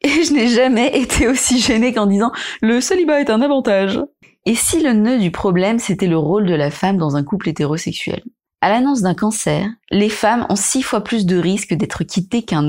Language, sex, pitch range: French, female, 175-240 Hz